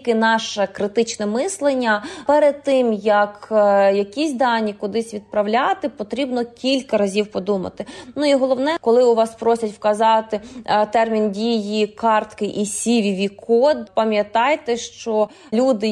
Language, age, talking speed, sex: Ukrainian, 20-39, 115 wpm, female